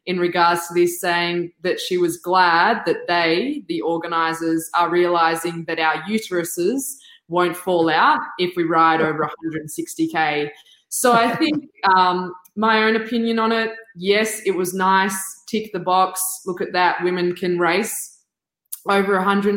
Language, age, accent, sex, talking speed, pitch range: English, 20-39, Australian, female, 150 wpm, 165-185 Hz